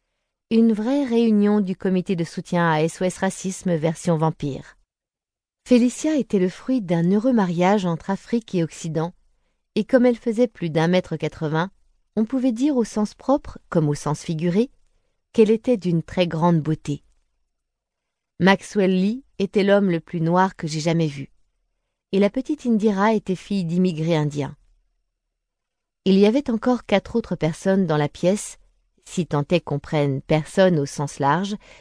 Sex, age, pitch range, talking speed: female, 30-49, 155-205 Hz, 160 wpm